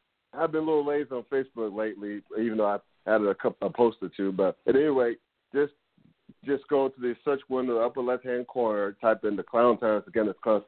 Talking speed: 235 wpm